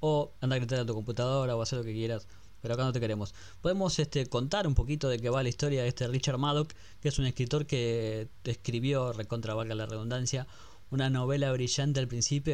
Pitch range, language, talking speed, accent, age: 110-140 Hz, Spanish, 220 wpm, Argentinian, 20-39